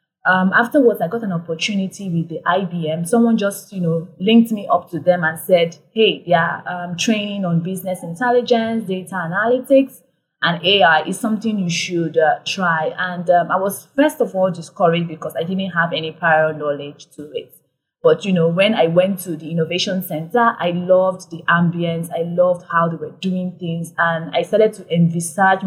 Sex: female